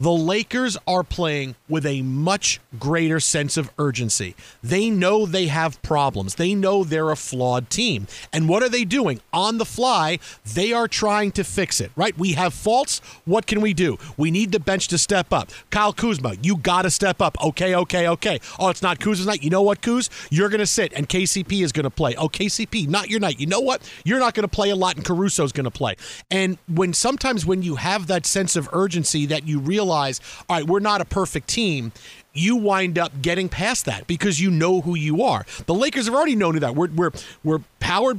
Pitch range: 155-205 Hz